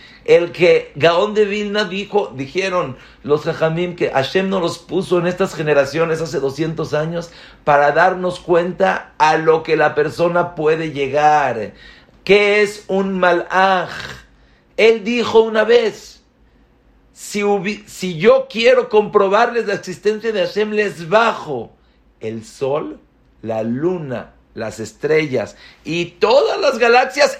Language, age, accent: English, 50-69, Mexican